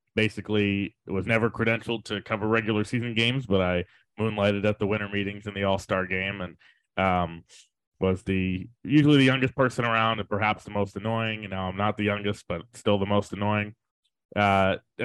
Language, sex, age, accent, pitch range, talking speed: English, male, 20-39, American, 95-110 Hz, 185 wpm